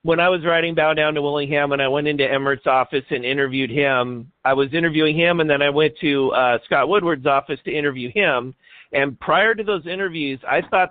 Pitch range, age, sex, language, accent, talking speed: 135-180 Hz, 50-69, male, English, American, 220 wpm